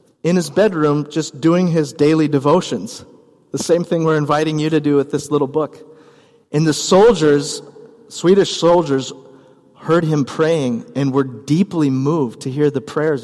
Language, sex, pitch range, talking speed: English, male, 140-190 Hz, 165 wpm